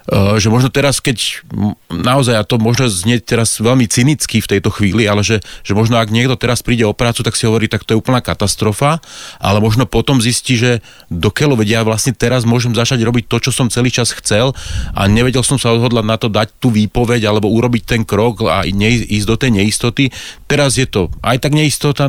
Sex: male